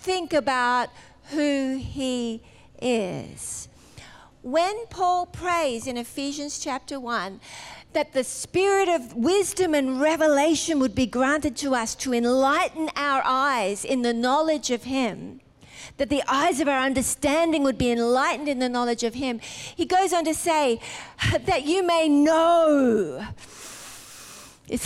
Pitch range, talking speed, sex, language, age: 245-325 Hz, 140 wpm, female, English, 40-59